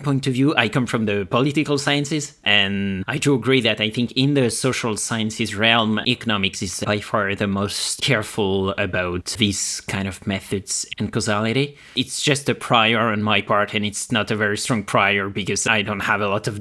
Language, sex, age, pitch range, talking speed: English, male, 20-39, 105-125 Hz, 200 wpm